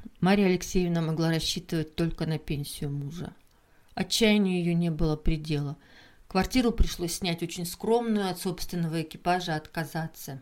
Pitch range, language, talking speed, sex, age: 160-190 Hz, Russian, 125 wpm, female, 40-59